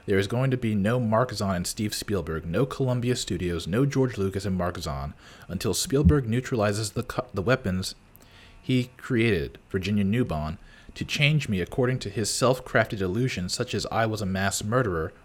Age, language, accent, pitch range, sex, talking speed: 30-49, English, American, 100-130 Hz, male, 175 wpm